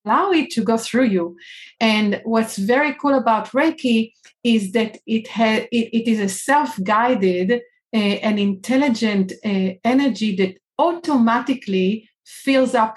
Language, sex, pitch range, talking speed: English, female, 205-250 Hz, 140 wpm